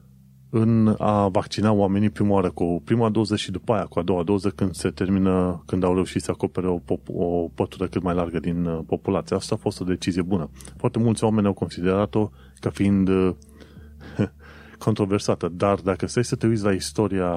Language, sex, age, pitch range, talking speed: Romanian, male, 30-49, 85-105 Hz, 195 wpm